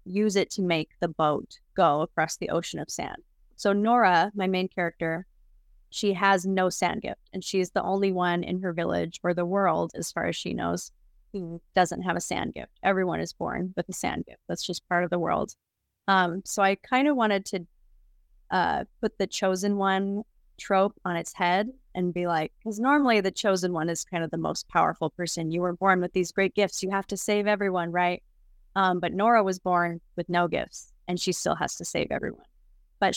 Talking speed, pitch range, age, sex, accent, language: 210 wpm, 175-200 Hz, 30-49, female, American, English